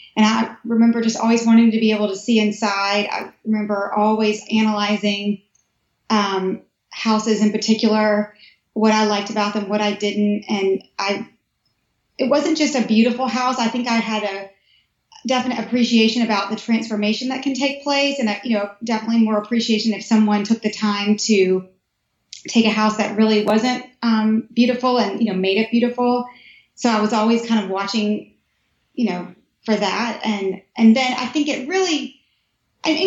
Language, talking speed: English, 175 wpm